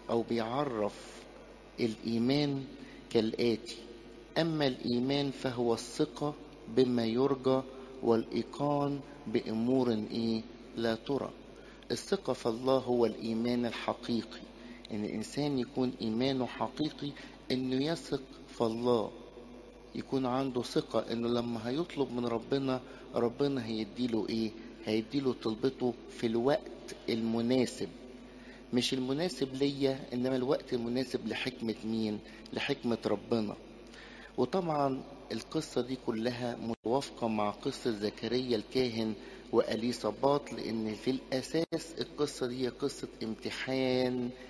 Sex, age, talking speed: male, 50-69, 100 wpm